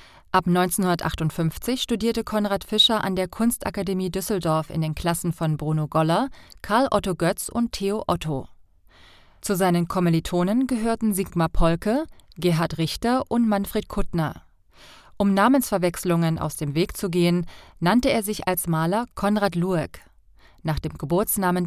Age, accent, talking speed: 30-49, German, 135 wpm